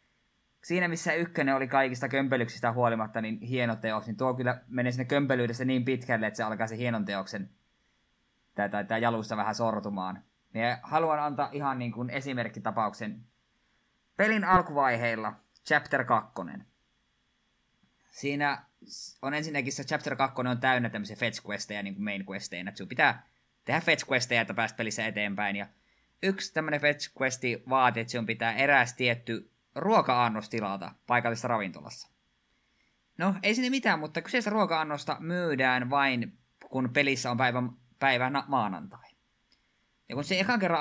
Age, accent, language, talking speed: 20-39, native, Finnish, 140 wpm